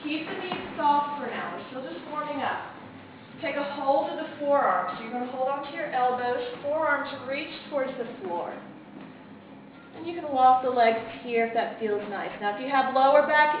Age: 30-49